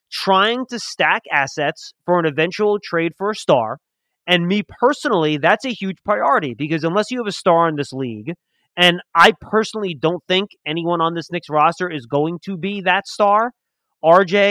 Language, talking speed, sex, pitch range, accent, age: English, 180 wpm, male, 165-205 Hz, American, 30-49